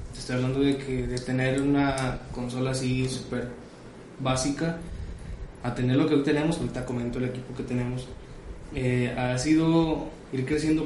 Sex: male